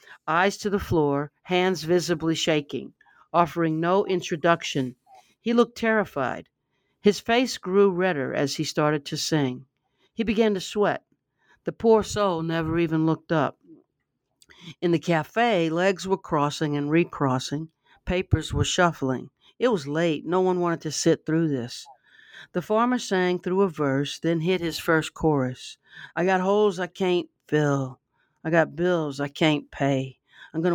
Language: English